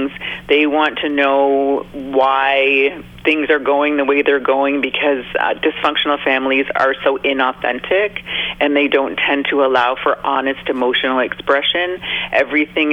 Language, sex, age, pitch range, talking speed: English, female, 40-59, 135-160 Hz, 140 wpm